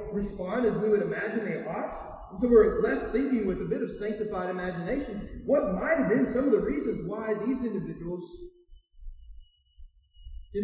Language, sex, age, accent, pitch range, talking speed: English, male, 30-49, American, 155-215 Hz, 170 wpm